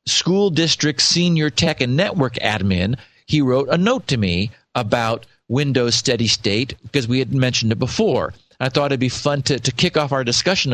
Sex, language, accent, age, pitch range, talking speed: male, English, American, 50-69, 115-155 Hz, 190 wpm